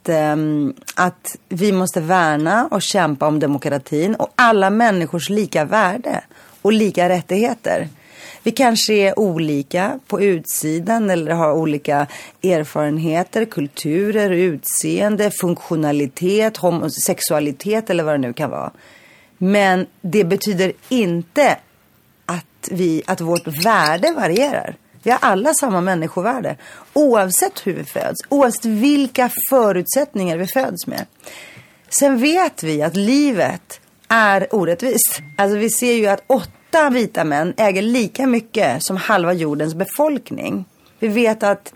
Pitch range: 160-225 Hz